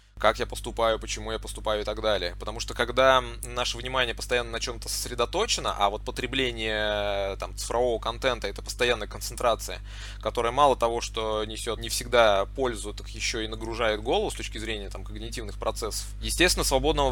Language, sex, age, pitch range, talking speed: Russian, male, 20-39, 105-125 Hz, 170 wpm